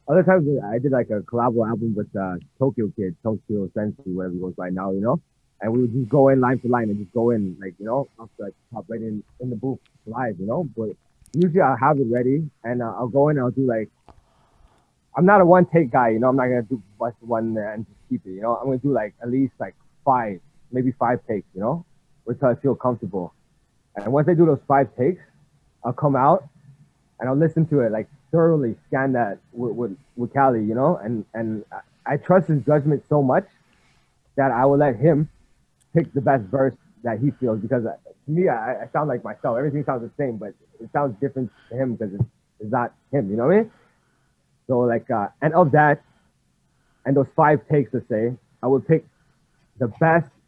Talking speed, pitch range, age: 225 wpm, 115-145 Hz, 20-39